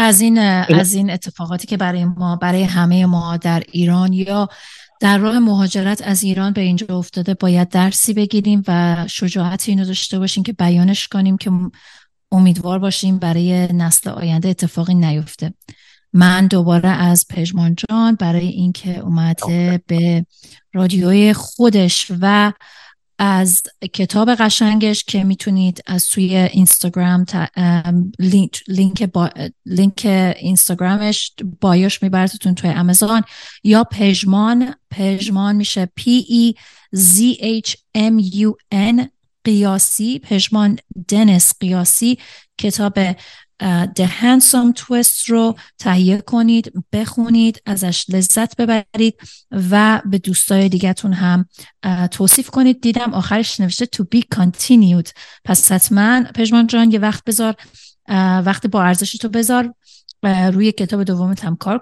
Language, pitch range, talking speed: Persian, 180-215 Hz, 125 wpm